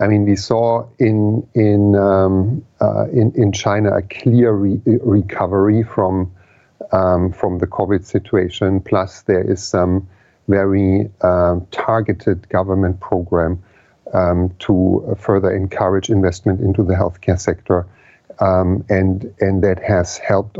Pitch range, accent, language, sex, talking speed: 90-105 Hz, German, English, male, 130 wpm